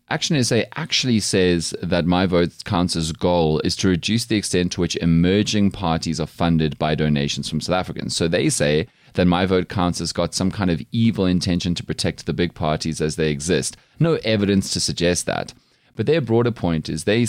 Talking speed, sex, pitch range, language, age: 200 wpm, male, 85-115 Hz, English, 30-49